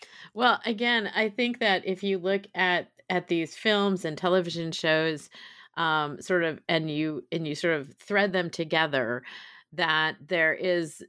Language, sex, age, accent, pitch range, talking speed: English, female, 30-49, American, 145-175 Hz, 160 wpm